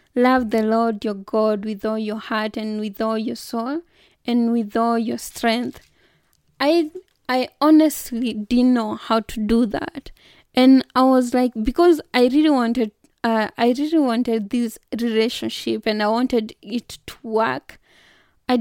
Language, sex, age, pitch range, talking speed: English, female, 20-39, 225-260 Hz, 160 wpm